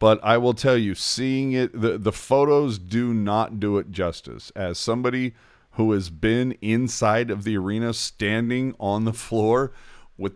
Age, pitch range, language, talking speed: 40-59, 95-120 Hz, English, 170 wpm